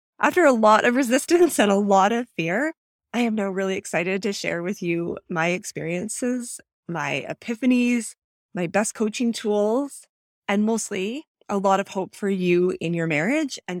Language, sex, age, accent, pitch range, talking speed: English, female, 20-39, American, 180-235 Hz, 170 wpm